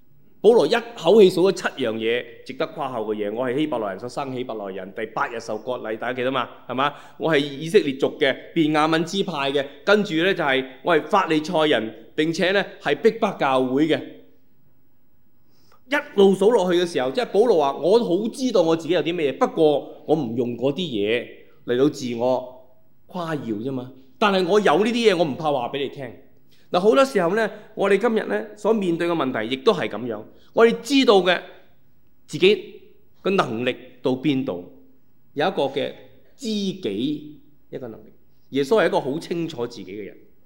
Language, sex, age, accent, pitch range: Chinese, male, 20-39, native, 125-195 Hz